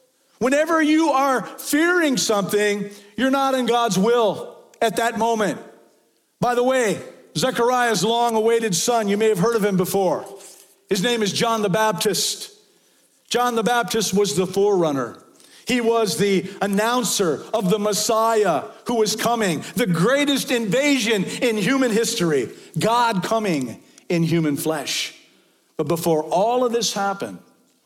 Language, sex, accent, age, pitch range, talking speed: English, male, American, 50-69, 205-255 Hz, 140 wpm